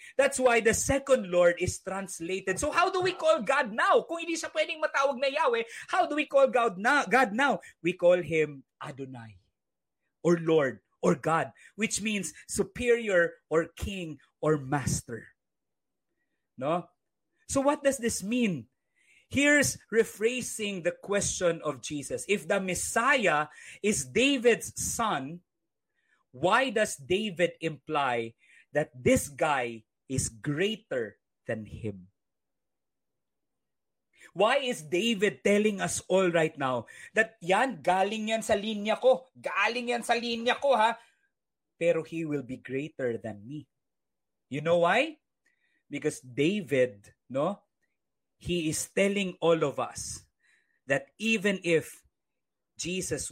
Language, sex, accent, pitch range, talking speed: Filipino, male, native, 145-235 Hz, 130 wpm